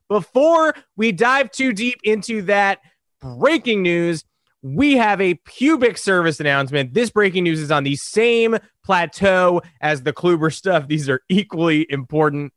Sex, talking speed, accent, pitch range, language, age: male, 150 wpm, American, 160-240 Hz, English, 20-39